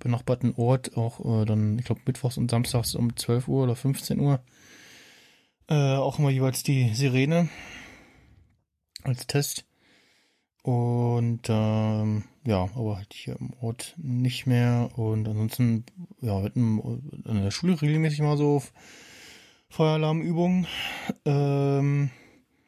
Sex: male